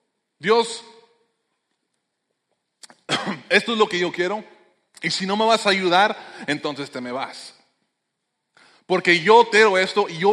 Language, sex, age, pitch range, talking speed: English, male, 30-49, 130-175 Hz, 140 wpm